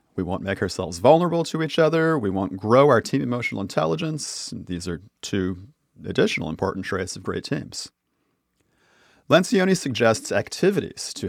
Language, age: English, 30-49